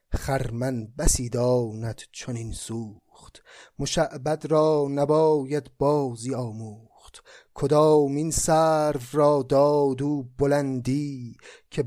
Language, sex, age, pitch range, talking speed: Persian, male, 30-49, 125-160 Hz, 90 wpm